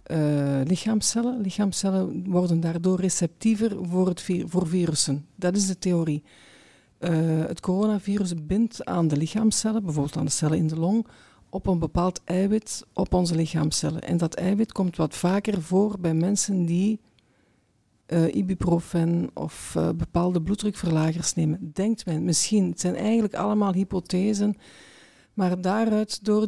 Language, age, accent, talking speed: Dutch, 50-69, Dutch, 145 wpm